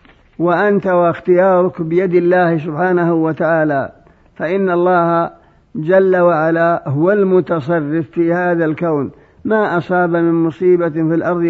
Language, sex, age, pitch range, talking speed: Arabic, male, 50-69, 160-180 Hz, 110 wpm